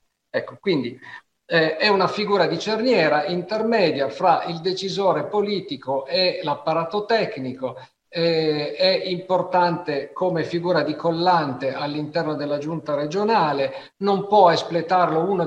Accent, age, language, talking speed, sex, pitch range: native, 50-69, Italian, 120 wpm, male, 150-190 Hz